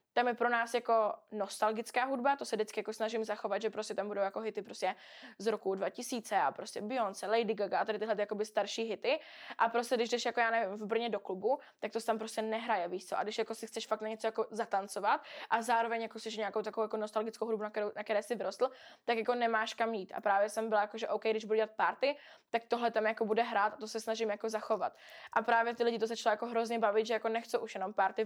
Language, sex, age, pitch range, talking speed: Czech, female, 20-39, 215-235 Hz, 255 wpm